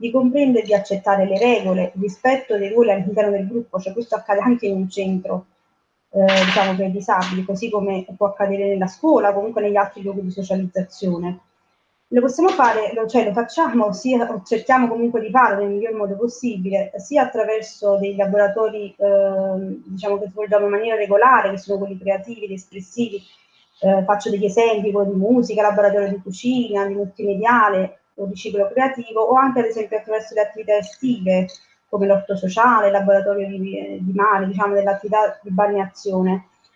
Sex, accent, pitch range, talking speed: female, native, 200-235 Hz, 170 wpm